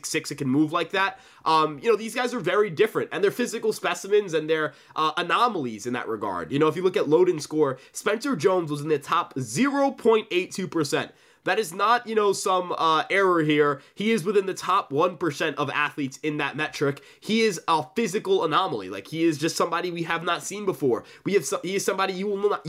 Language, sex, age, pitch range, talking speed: English, male, 20-39, 155-215 Hz, 225 wpm